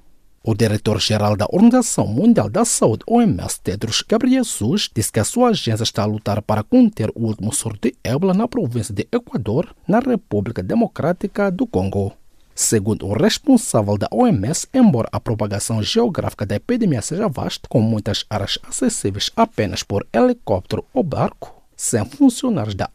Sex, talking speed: male, 155 wpm